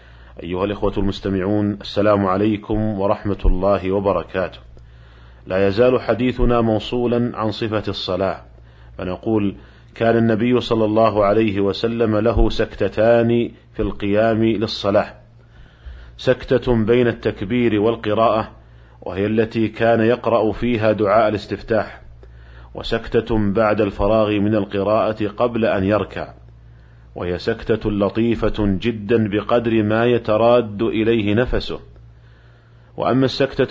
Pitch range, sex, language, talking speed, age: 100-115 Hz, male, Arabic, 100 wpm, 40-59